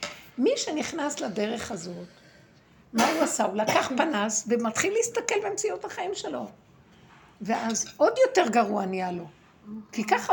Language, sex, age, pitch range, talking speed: Hebrew, female, 60-79, 215-310 Hz, 135 wpm